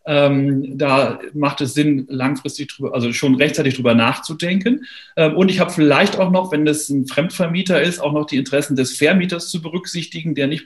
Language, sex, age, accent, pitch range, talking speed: German, male, 40-59, German, 135-155 Hz, 190 wpm